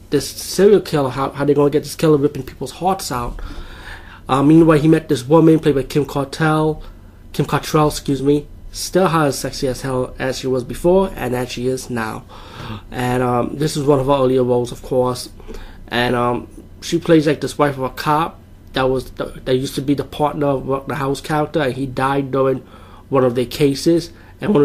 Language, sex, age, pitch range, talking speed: English, male, 20-39, 120-150 Hz, 210 wpm